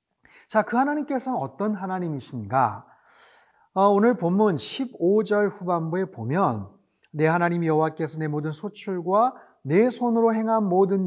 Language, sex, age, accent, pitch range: Korean, male, 30-49, native, 160-205 Hz